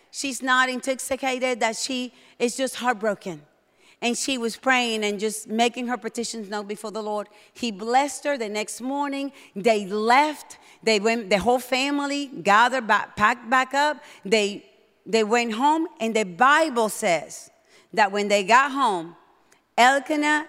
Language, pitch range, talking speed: English, 205-275 Hz, 155 wpm